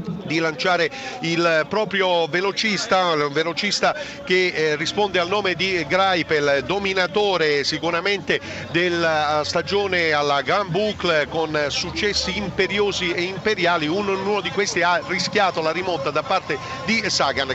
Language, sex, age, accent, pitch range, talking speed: Italian, male, 50-69, native, 165-200 Hz, 125 wpm